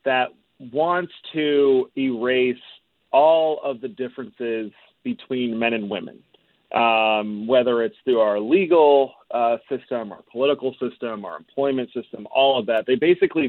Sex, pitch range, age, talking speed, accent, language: male, 125-165 Hz, 30-49, 140 wpm, American, English